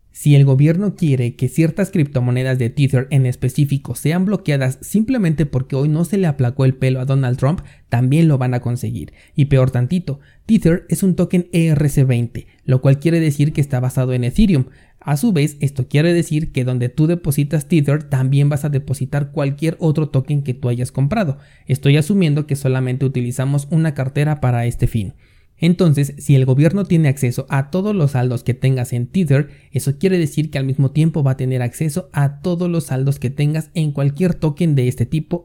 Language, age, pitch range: Spanish, 30-49, 130-160 Hz